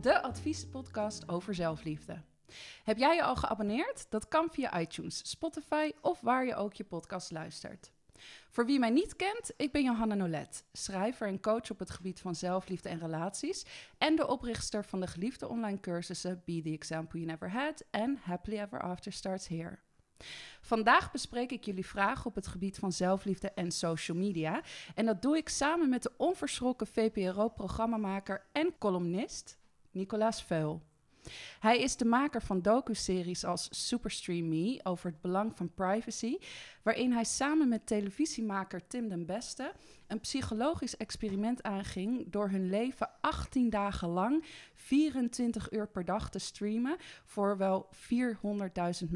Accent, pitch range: Dutch, 180-240 Hz